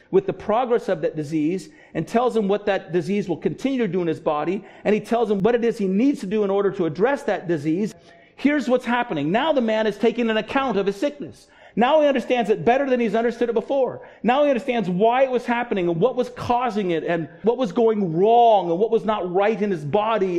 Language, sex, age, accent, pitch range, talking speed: English, male, 50-69, American, 180-245 Hz, 245 wpm